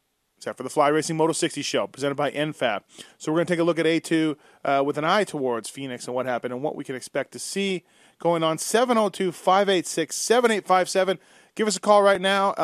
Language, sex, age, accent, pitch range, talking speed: English, male, 30-49, American, 145-185 Hz, 215 wpm